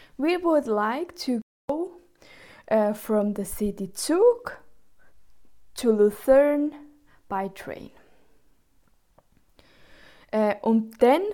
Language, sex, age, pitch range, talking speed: English, female, 20-39, 210-270 Hz, 125 wpm